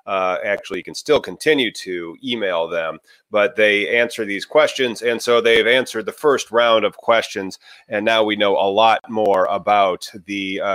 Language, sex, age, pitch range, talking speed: English, male, 30-49, 95-120 Hz, 185 wpm